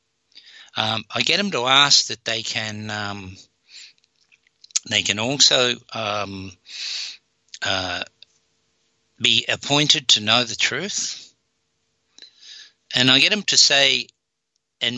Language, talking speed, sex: English, 110 wpm, male